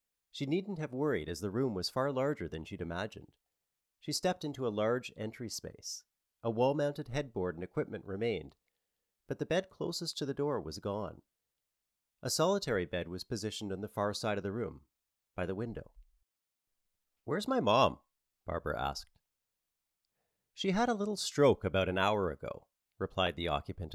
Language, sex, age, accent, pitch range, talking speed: English, male, 40-59, American, 85-130 Hz, 170 wpm